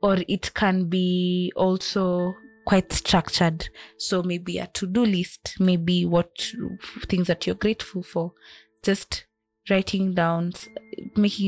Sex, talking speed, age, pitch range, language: female, 120 wpm, 20-39, 175-205 Hz, English